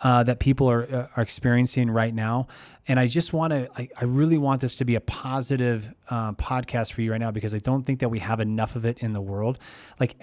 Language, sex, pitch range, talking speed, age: English, male, 115-140 Hz, 245 wpm, 20-39